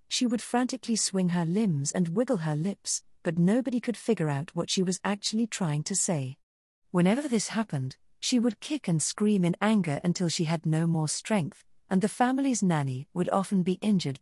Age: 40-59